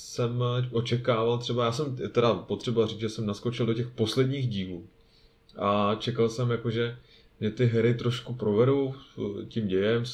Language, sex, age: Czech, male, 20-39